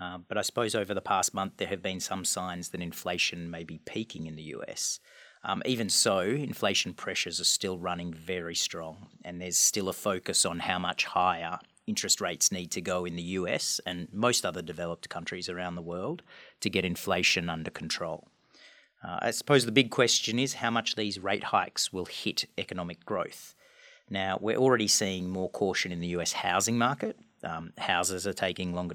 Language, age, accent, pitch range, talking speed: English, 40-59, Australian, 85-110 Hz, 195 wpm